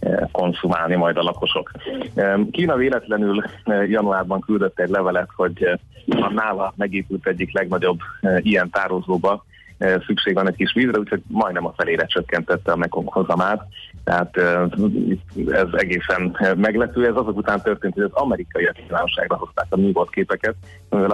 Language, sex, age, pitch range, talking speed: Hungarian, male, 30-49, 90-105 Hz, 135 wpm